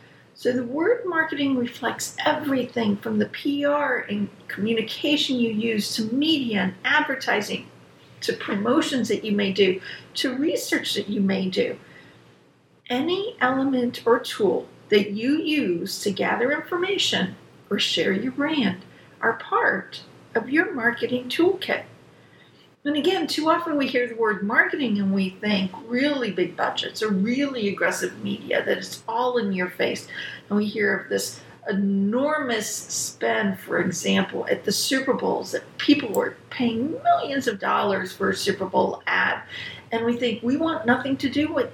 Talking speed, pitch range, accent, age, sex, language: 155 wpm, 210-300 Hz, American, 50-69, female, English